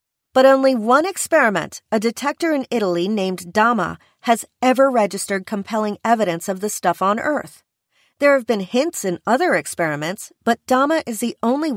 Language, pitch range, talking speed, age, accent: English, 185-255 Hz, 165 wpm, 40-59, American